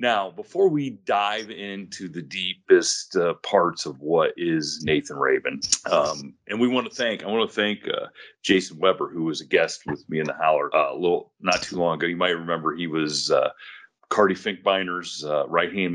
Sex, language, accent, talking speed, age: male, English, American, 205 wpm, 40-59